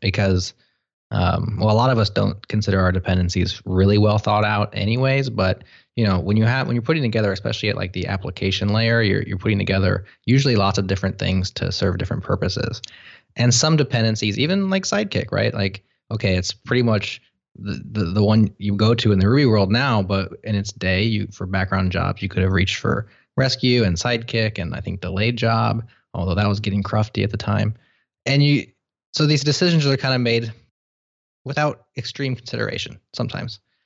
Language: English